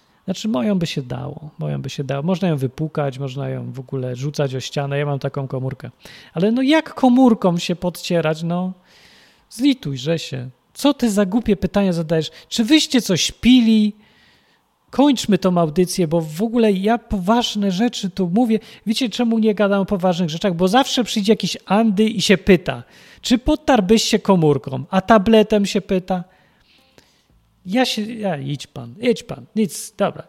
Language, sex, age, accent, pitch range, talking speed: Polish, male, 40-59, native, 150-210 Hz, 170 wpm